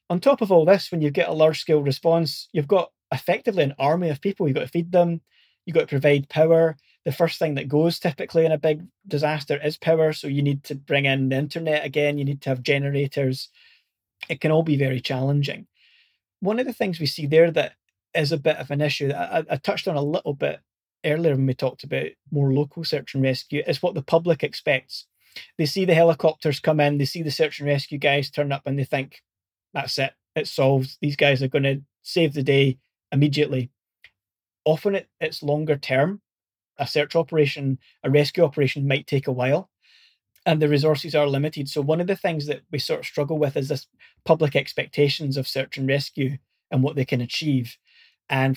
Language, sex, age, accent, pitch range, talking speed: English, male, 30-49, British, 140-160 Hz, 215 wpm